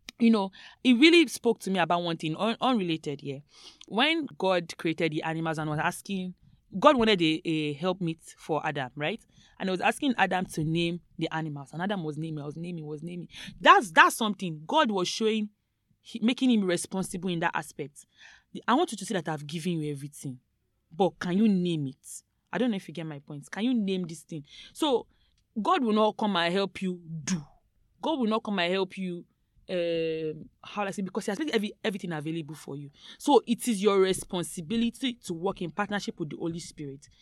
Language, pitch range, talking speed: English, 165-215 Hz, 210 wpm